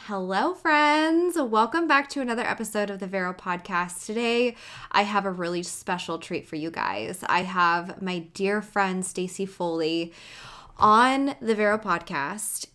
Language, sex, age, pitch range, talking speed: English, female, 20-39, 175-210 Hz, 150 wpm